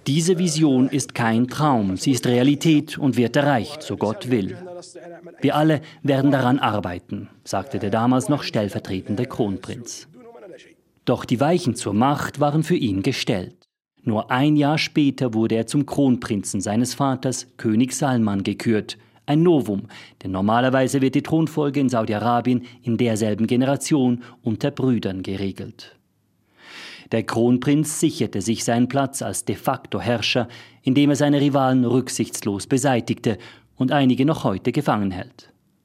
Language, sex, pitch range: German, male, 110-145 Hz